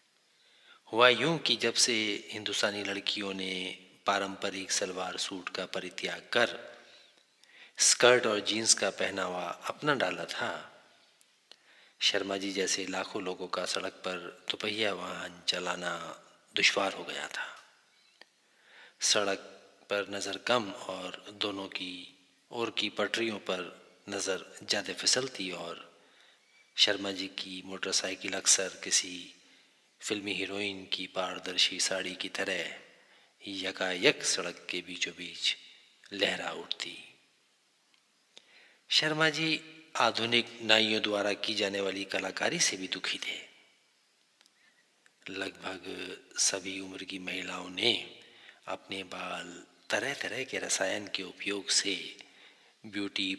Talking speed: 110 wpm